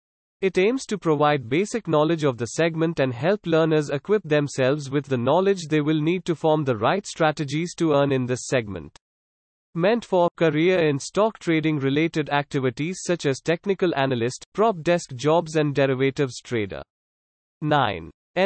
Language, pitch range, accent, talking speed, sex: English, 135-175 Hz, Indian, 160 wpm, male